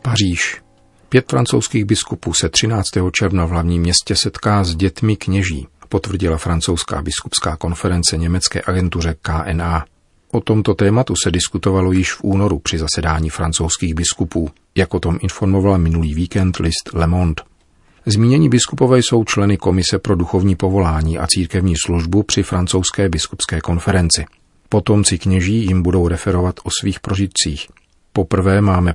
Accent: native